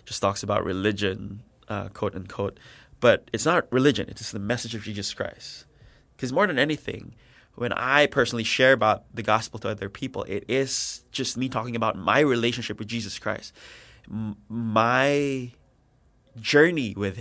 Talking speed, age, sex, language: 155 wpm, 20-39, male, English